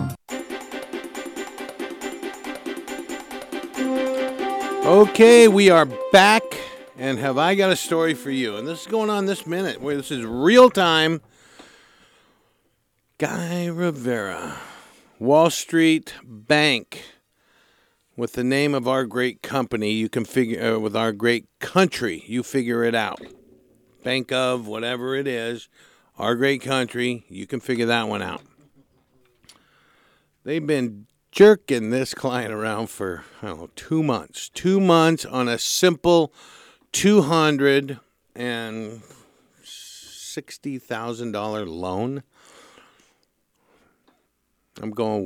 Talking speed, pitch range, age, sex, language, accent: 110 wpm, 115-160 Hz, 50-69, male, English, American